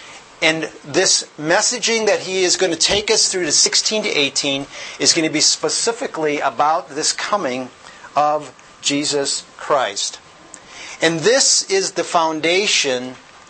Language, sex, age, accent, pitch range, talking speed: English, male, 50-69, American, 130-175 Hz, 140 wpm